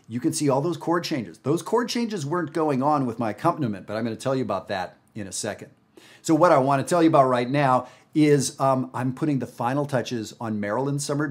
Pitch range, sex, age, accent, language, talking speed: 110-135 Hz, male, 40-59, American, English, 240 wpm